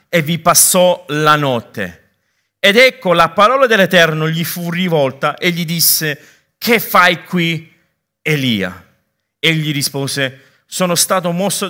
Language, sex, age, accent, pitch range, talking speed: Italian, male, 50-69, native, 145-180 Hz, 130 wpm